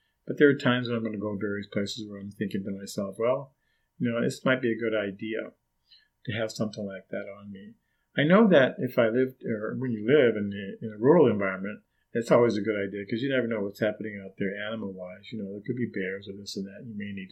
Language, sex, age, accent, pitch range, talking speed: English, male, 50-69, American, 100-120 Hz, 260 wpm